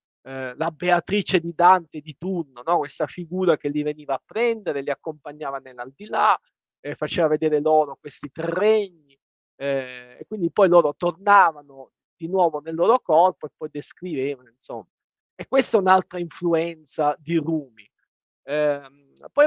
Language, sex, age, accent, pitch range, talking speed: Italian, male, 40-59, native, 135-175 Hz, 155 wpm